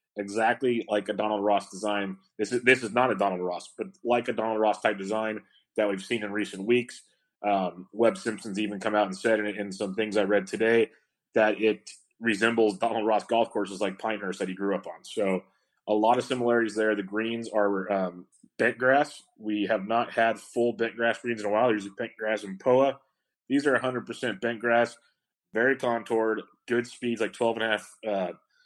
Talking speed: 205 wpm